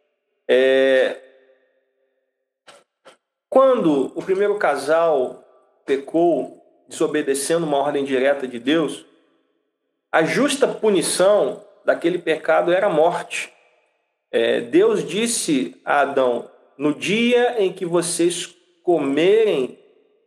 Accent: Brazilian